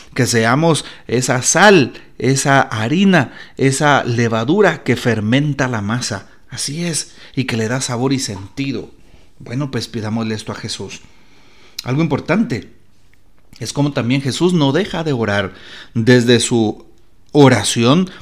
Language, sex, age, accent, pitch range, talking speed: Spanish, male, 40-59, Mexican, 115-145 Hz, 130 wpm